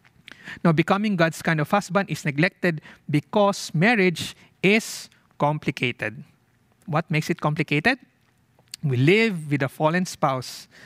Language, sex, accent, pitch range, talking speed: English, male, Filipino, 140-180 Hz, 120 wpm